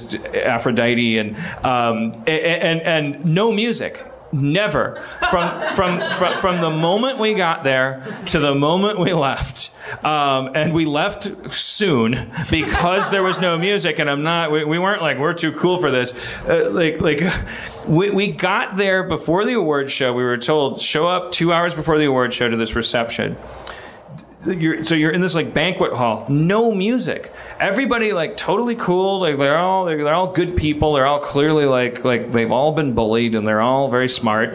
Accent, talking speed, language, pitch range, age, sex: American, 185 wpm, English, 120-170 Hz, 30-49, male